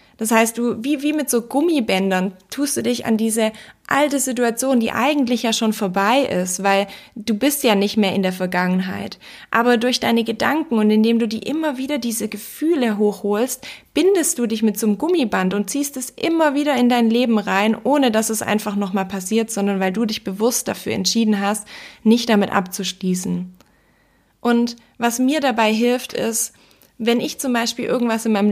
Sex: female